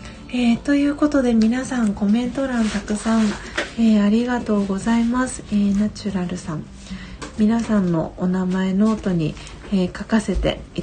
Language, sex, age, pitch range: Japanese, female, 40-59, 185-225 Hz